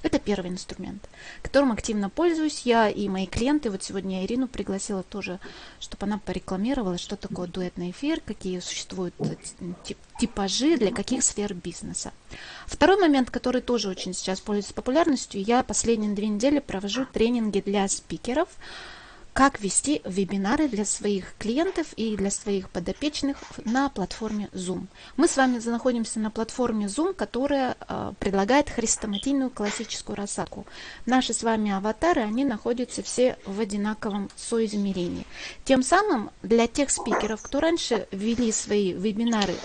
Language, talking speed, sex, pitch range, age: Russian, 135 wpm, female, 195-255 Hz, 20-39